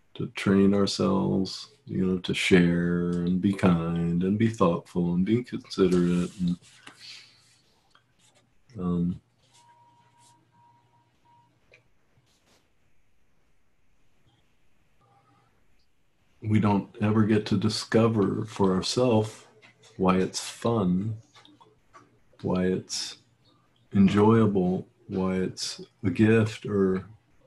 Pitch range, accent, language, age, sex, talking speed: 90-115 Hz, American, English, 40-59, male, 80 wpm